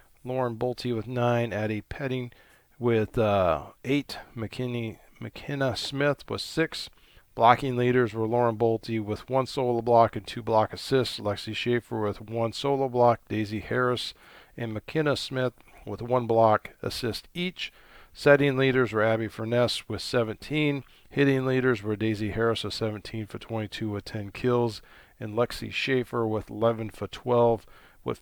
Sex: male